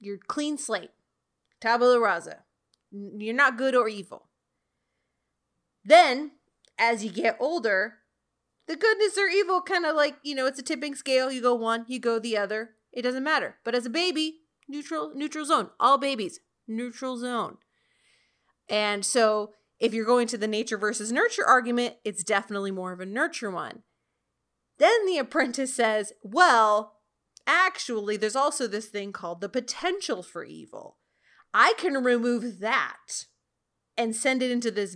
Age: 30-49